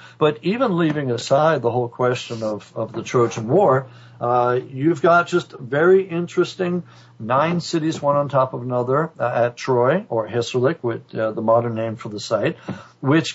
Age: 60-79